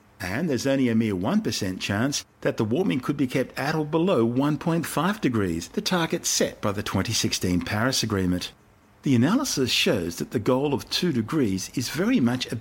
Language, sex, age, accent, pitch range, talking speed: English, male, 50-69, Australian, 95-130 Hz, 185 wpm